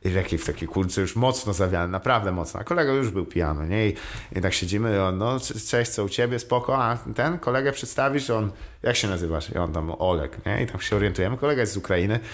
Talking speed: 235 wpm